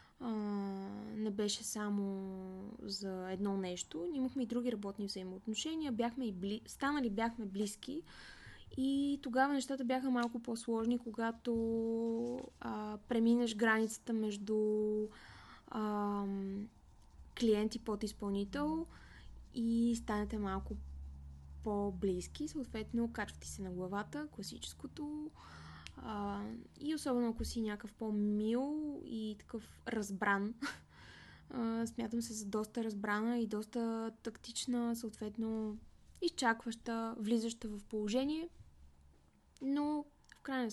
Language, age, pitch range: Bulgarian, 20-39, 210-255 Hz